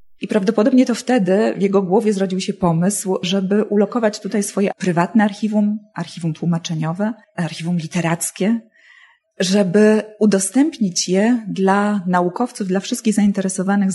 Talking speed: 120 wpm